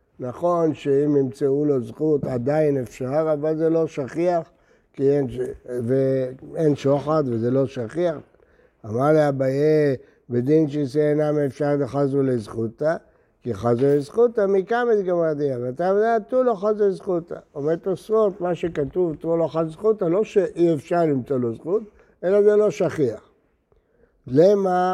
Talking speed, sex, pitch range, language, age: 140 wpm, male, 140-185 Hz, Hebrew, 60-79